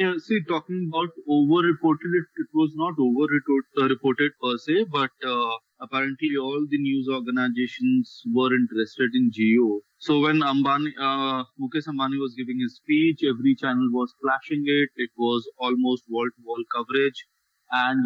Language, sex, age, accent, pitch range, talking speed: English, male, 30-49, Indian, 125-160 Hz, 155 wpm